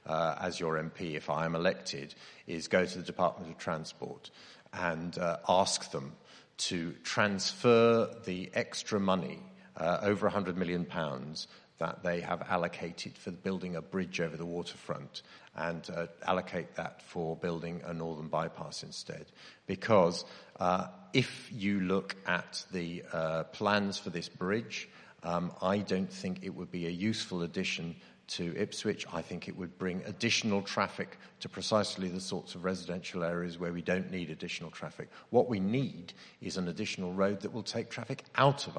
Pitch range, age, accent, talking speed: 90-105 Hz, 50-69, British, 165 wpm